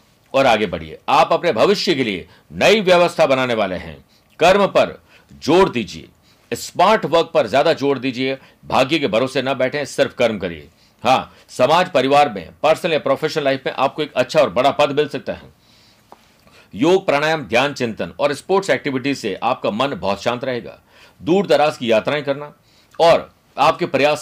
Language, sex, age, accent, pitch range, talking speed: Hindi, male, 50-69, native, 115-150 Hz, 175 wpm